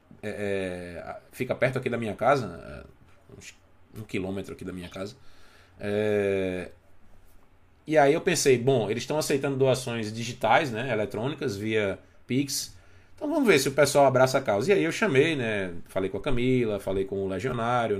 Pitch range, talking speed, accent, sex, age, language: 95-135 Hz, 165 wpm, Brazilian, male, 20-39, Portuguese